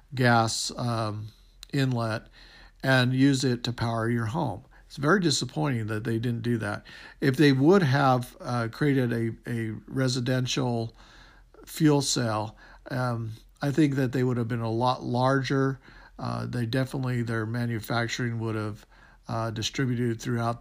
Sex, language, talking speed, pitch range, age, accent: male, English, 145 wpm, 115-130 Hz, 50-69, American